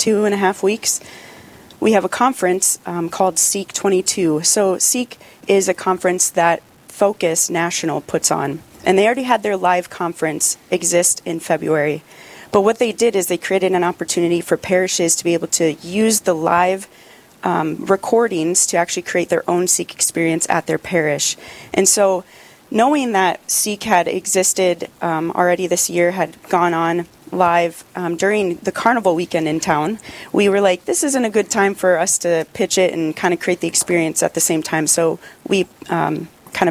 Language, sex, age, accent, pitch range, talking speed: English, female, 30-49, American, 170-195 Hz, 180 wpm